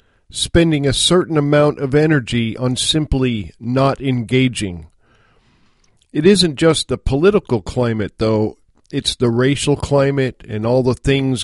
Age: 50-69